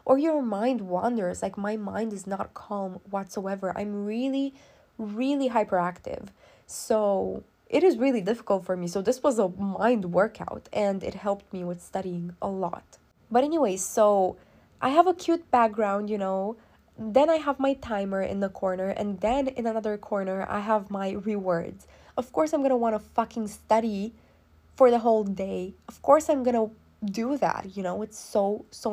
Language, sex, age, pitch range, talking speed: English, female, 20-39, 195-250 Hz, 175 wpm